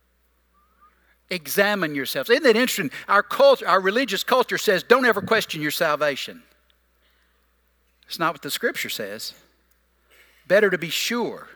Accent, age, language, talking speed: American, 60-79, English, 135 wpm